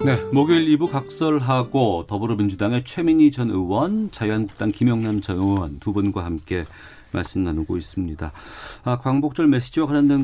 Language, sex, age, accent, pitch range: Korean, male, 40-59, native, 100-135 Hz